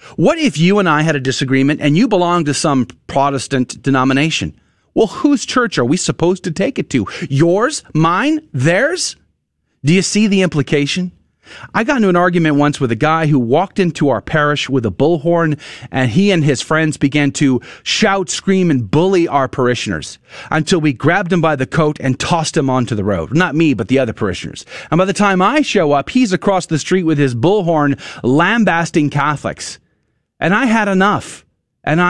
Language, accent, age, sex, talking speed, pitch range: English, American, 40-59, male, 195 wpm, 140-190 Hz